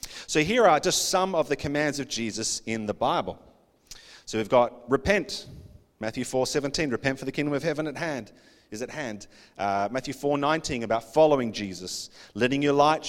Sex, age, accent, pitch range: male, 30-49, Australian, 120-145 Hz